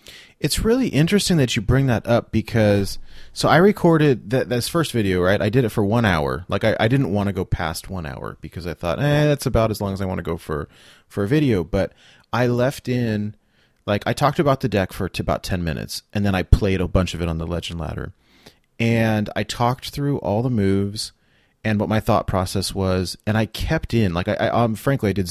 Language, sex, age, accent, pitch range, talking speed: English, male, 30-49, American, 95-120 Hz, 240 wpm